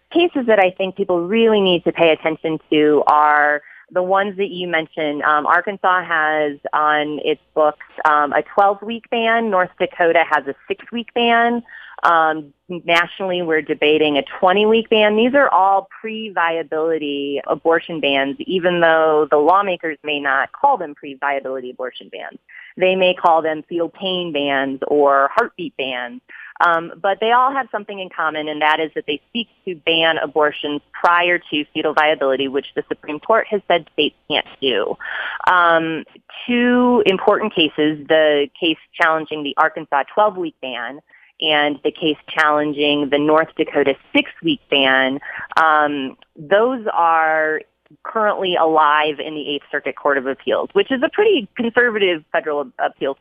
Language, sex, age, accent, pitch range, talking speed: English, female, 30-49, American, 150-195 Hz, 155 wpm